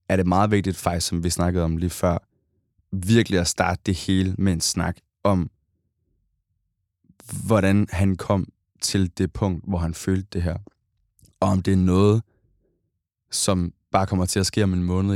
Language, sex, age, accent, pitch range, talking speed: Danish, male, 20-39, native, 90-100 Hz, 180 wpm